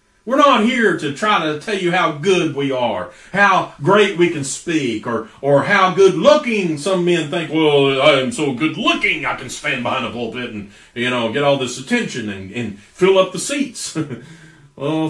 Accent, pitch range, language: American, 130-190 Hz, English